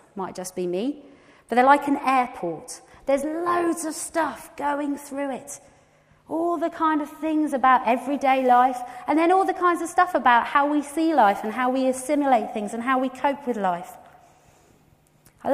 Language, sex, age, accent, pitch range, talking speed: English, female, 30-49, British, 195-295 Hz, 185 wpm